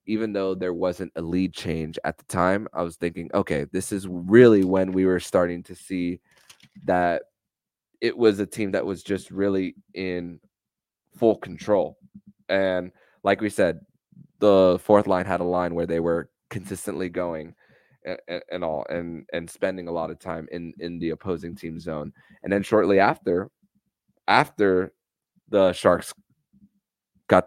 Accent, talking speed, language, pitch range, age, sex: American, 160 wpm, English, 90-105 Hz, 20-39, male